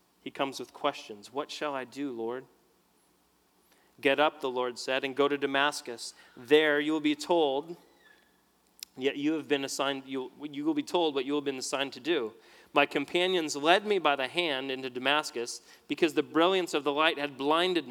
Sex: male